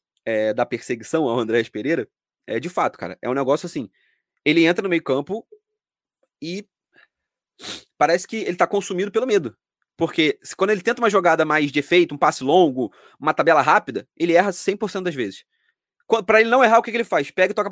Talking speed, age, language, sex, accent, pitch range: 205 wpm, 20-39, Portuguese, male, Brazilian, 145-220 Hz